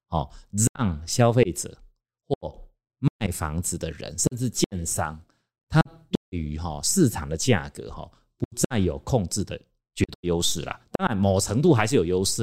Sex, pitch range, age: male, 85-125 Hz, 30-49